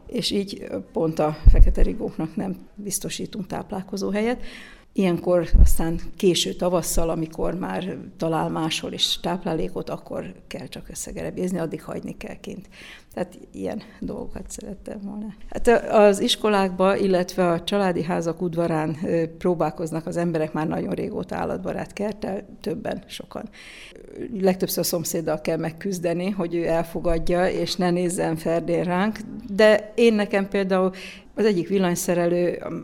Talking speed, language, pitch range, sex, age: 130 wpm, Hungarian, 165-200 Hz, female, 60-79